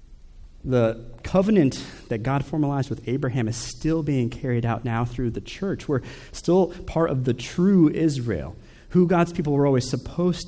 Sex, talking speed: male, 165 wpm